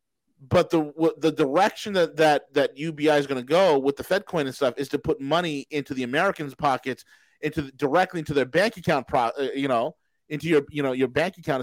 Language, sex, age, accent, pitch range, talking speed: English, male, 40-59, American, 140-170 Hz, 230 wpm